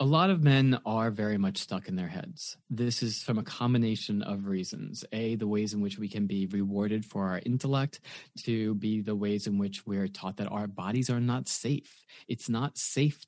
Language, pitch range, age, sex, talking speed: English, 105-130 Hz, 30-49, male, 210 wpm